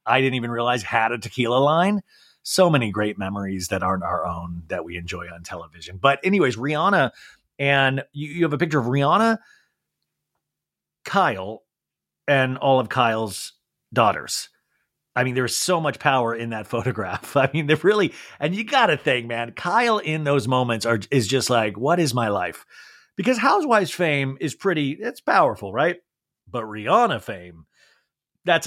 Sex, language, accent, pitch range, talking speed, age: male, English, American, 120-170 Hz, 175 wpm, 30-49